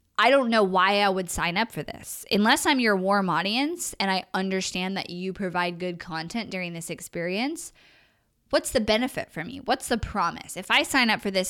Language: English